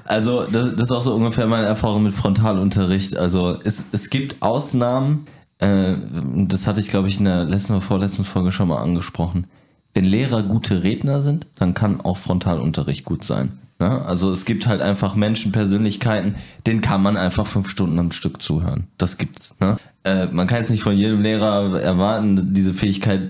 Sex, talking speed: male, 180 wpm